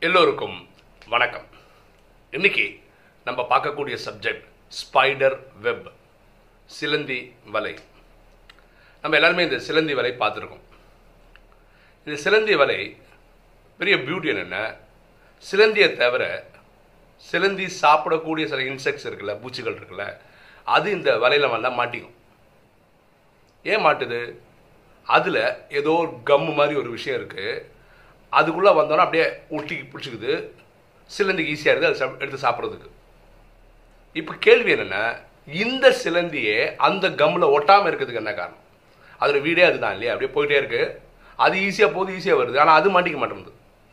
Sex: male